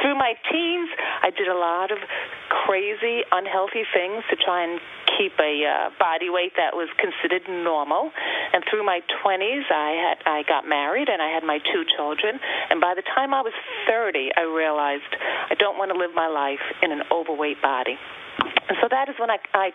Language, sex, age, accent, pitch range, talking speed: English, female, 40-59, American, 165-220 Hz, 200 wpm